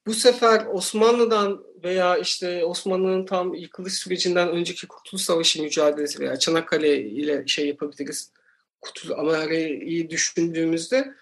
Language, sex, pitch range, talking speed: Turkish, male, 165-220 Hz, 110 wpm